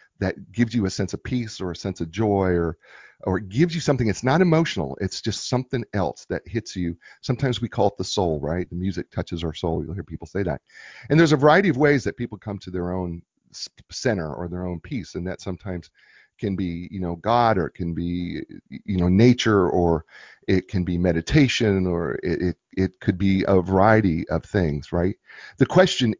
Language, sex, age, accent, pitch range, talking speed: English, male, 40-59, American, 90-120 Hz, 215 wpm